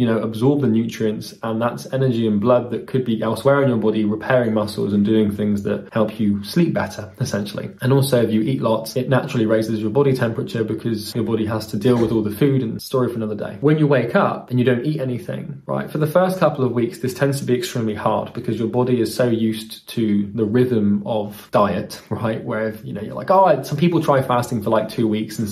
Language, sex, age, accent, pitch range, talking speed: English, male, 20-39, British, 110-140 Hz, 245 wpm